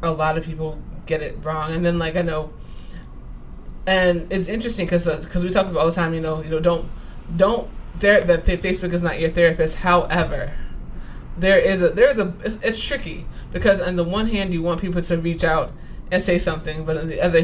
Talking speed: 220 wpm